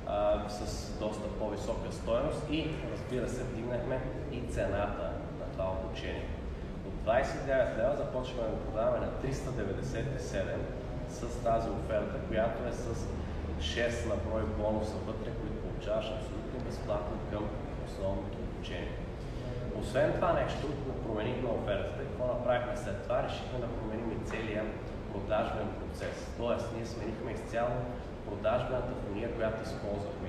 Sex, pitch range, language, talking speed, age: male, 95-115 Hz, Bulgarian, 125 wpm, 20-39